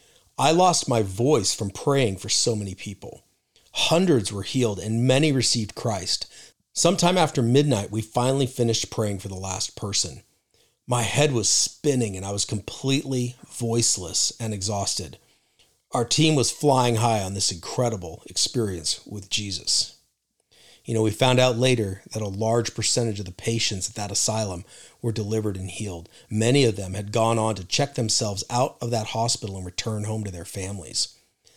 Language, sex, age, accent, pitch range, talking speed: English, male, 40-59, American, 100-125 Hz, 170 wpm